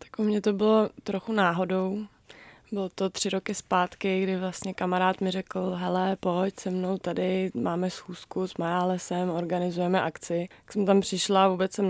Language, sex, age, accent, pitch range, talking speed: Czech, female, 20-39, native, 180-195 Hz, 170 wpm